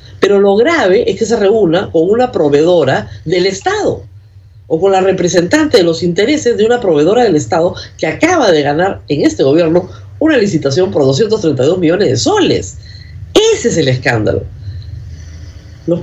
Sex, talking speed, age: female, 160 wpm, 50-69